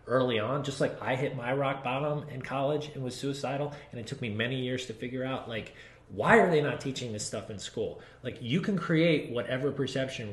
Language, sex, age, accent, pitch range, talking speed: English, male, 30-49, American, 110-140 Hz, 225 wpm